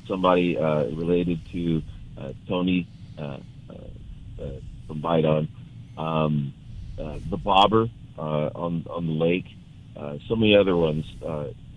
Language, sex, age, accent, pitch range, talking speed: English, male, 40-59, American, 80-105 Hz, 125 wpm